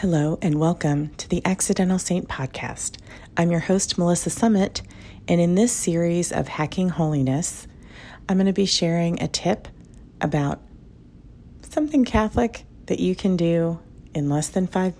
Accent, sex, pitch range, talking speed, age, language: American, female, 135-180 Hz, 150 wpm, 40-59, English